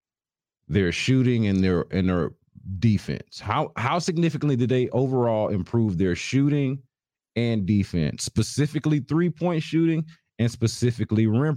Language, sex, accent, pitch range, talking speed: English, male, American, 95-130 Hz, 125 wpm